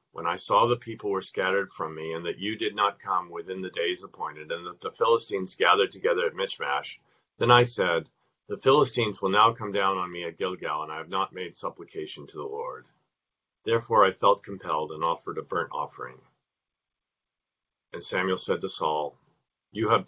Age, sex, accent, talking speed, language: 50-69, male, American, 195 wpm, English